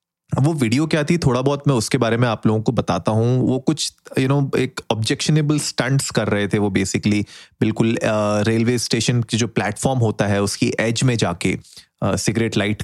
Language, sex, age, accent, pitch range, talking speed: Hindi, male, 30-49, native, 110-130 Hz, 205 wpm